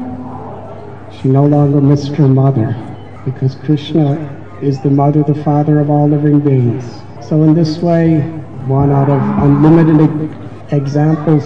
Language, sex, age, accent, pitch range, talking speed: English, male, 60-79, American, 125-150 Hz, 130 wpm